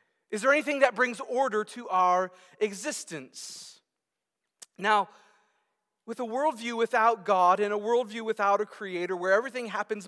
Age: 40-59